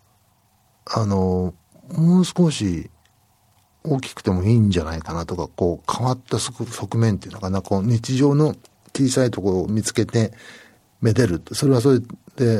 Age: 60-79